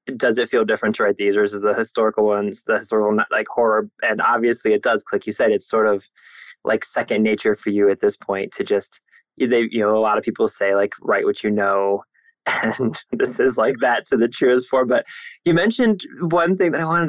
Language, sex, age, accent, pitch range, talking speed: English, male, 20-39, American, 110-145 Hz, 230 wpm